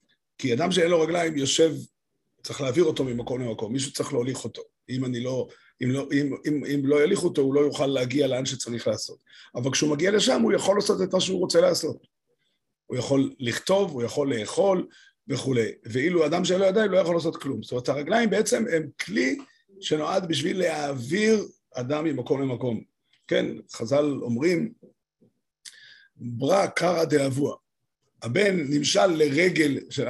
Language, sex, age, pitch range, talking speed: Hebrew, male, 50-69, 135-195 Hz, 160 wpm